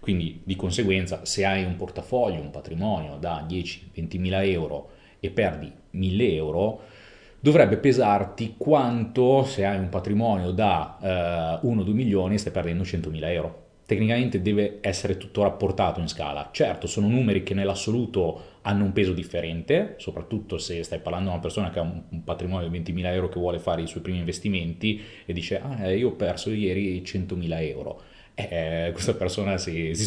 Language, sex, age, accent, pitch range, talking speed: Italian, male, 30-49, native, 85-105 Hz, 170 wpm